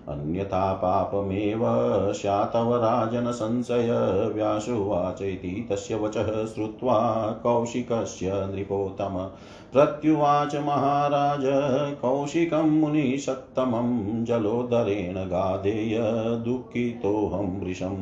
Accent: native